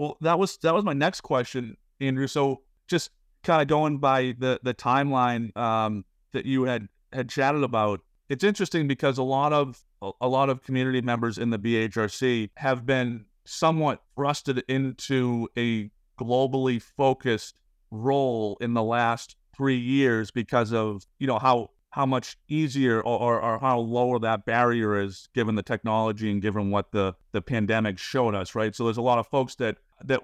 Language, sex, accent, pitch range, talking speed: English, male, American, 110-135 Hz, 175 wpm